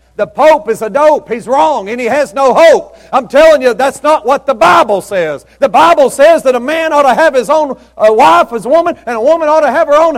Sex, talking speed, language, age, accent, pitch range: male, 265 wpm, English, 50-69, American, 190-295 Hz